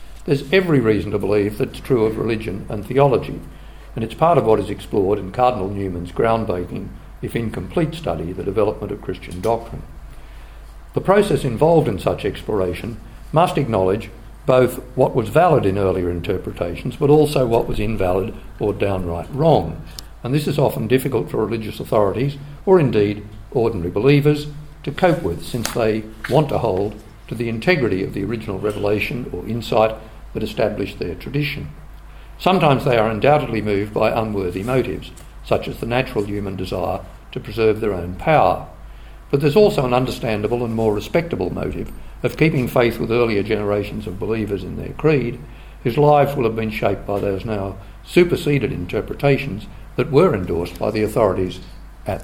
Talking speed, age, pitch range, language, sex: 165 wpm, 60-79, 100-140 Hz, English, male